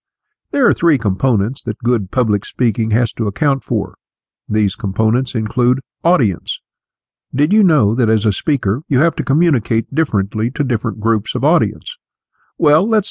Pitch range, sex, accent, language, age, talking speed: 105-140 Hz, male, American, English, 50-69, 160 wpm